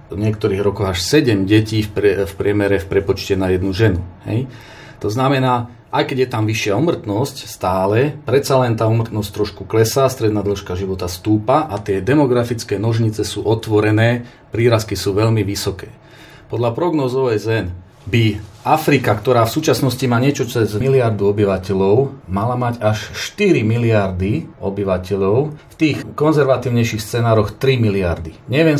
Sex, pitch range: male, 100-125 Hz